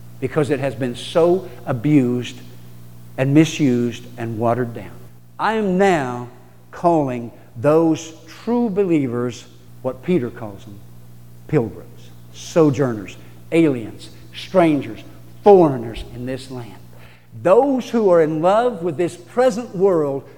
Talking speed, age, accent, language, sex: 115 wpm, 60-79, American, English, male